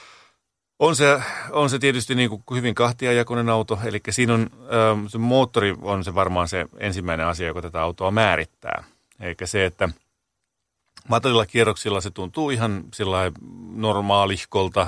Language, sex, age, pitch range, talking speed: Finnish, male, 30-49, 85-110 Hz, 135 wpm